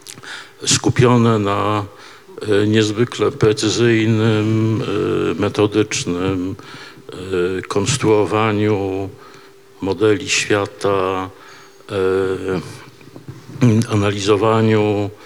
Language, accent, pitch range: Polish, native, 105-130 Hz